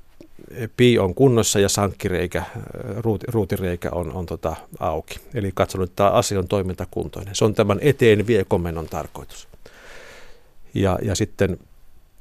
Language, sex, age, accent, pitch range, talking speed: Finnish, male, 50-69, native, 90-110 Hz, 125 wpm